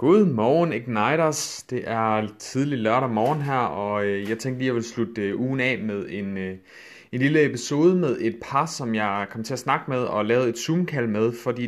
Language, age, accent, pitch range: Danish, 30-49, native, 105-130 Hz